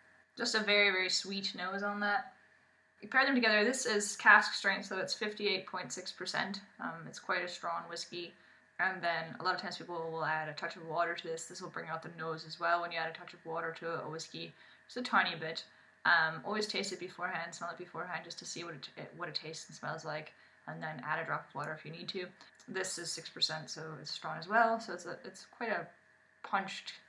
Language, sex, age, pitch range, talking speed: English, female, 10-29, 170-210 Hz, 235 wpm